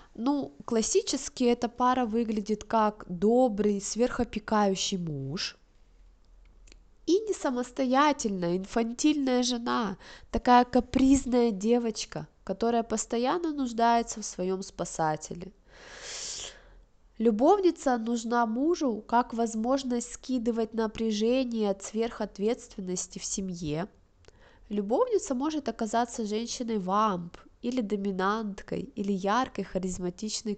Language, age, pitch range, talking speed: Russian, 20-39, 190-245 Hz, 85 wpm